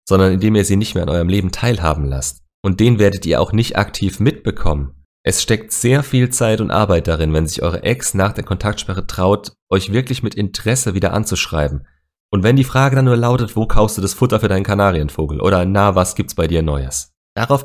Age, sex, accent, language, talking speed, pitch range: 30-49, male, German, German, 220 wpm, 80-105 Hz